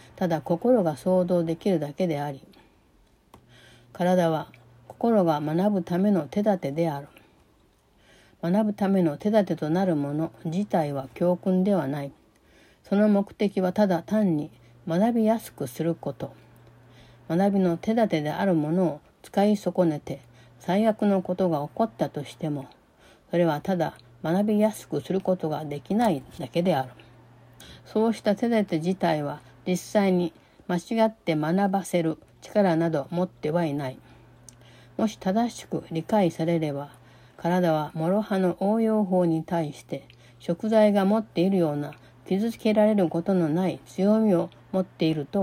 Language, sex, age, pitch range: Japanese, female, 60-79, 145-195 Hz